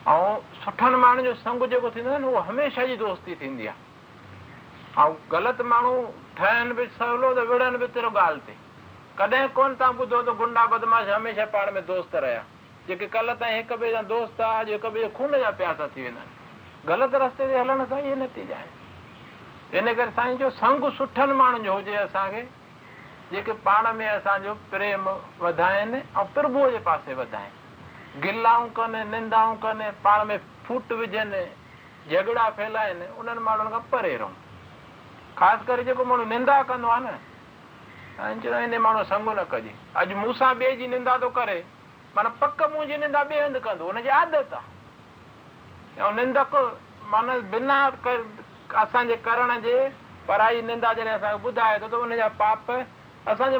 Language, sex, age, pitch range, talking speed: Hindi, male, 60-79, 215-255 Hz, 135 wpm